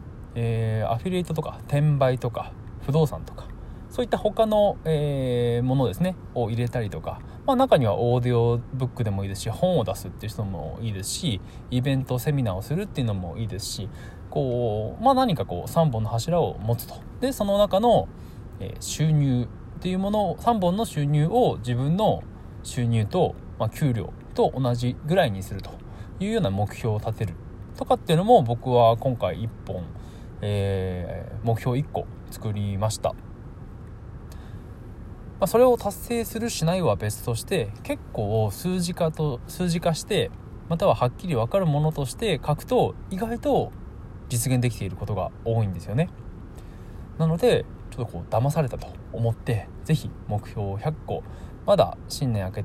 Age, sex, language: 20-39, male, Japanese